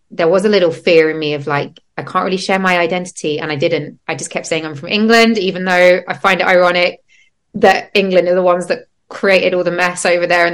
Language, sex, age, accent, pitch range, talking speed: English, female, 20-39, British, 155-190 Hz, 250 wpm